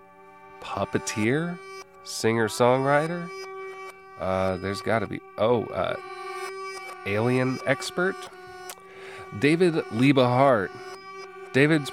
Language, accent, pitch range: English, American, 105-160 Hz